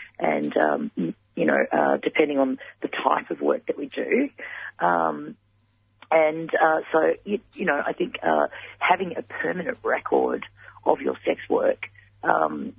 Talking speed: 155 wpm